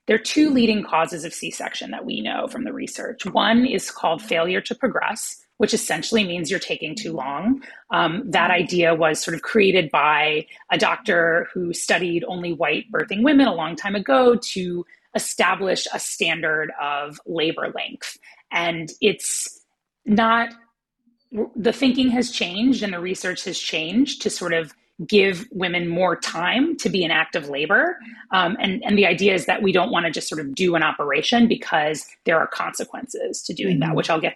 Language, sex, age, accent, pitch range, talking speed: English, female, 30-49, American, 170-230 Hz, 180 wpm